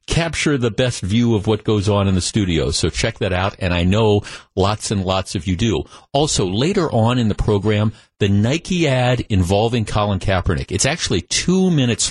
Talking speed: 200 wpm